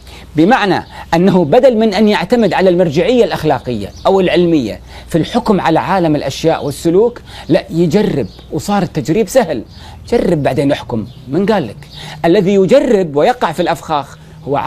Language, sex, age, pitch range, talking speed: Arabic, male, 40-59, 145-210 Hz, 135 wpm